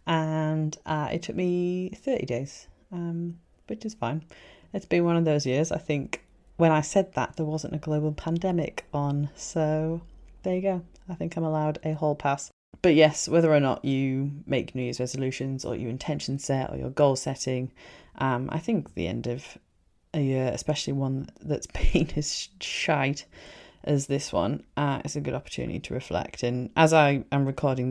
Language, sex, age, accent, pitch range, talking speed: English, female, 30-49, British, 140-170 Hz, 185 wpm